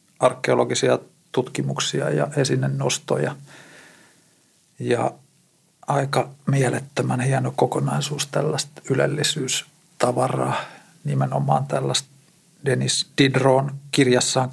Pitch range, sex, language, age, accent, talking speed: 120-145 Hz, male, Finnish, 50-69, native, 70 wpm